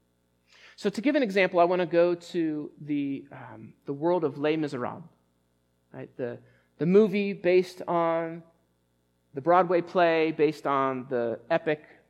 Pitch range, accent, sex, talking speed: 115-180 Hz, American, male, 150 wpm